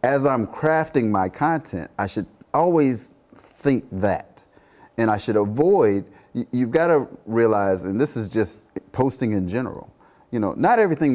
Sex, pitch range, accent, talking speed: male, 95-125 Hz, American, 155 wpm